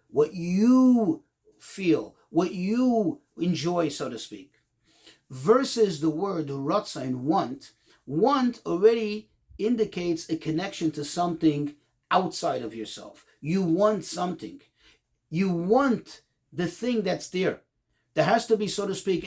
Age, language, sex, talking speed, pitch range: 40-59, English, male, 130 wpm, 165-225 Hz